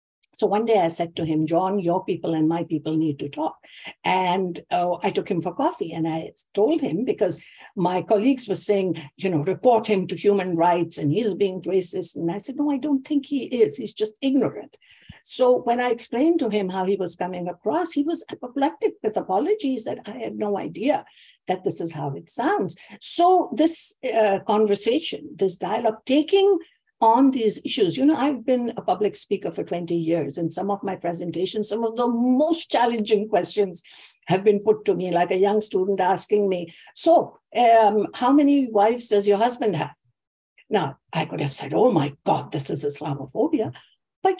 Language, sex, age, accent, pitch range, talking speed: English, female, 60-79, Indian, 175-255 Hz, 195 wpm